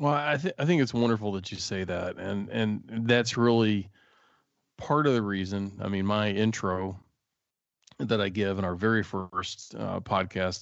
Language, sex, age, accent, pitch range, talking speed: English, male, 40-59, American, 95-110 Hz, 180 wpm